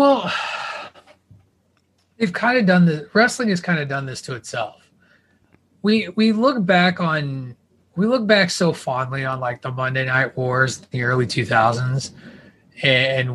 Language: English